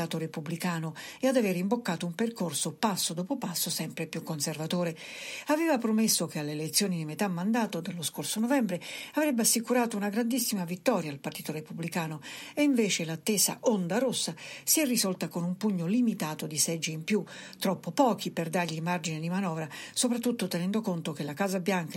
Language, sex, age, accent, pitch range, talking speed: Italian, female, 60-79, native, 170-230 Hz, 170 wpm